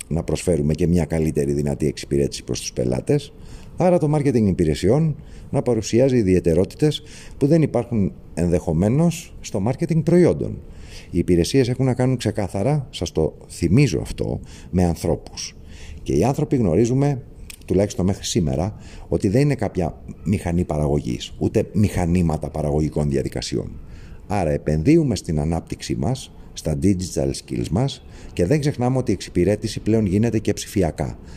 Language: Greek